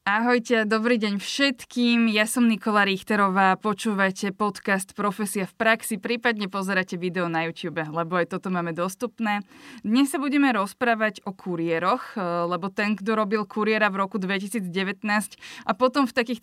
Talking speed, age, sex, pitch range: 150 wpm, 20-39, female, 180-215 Hz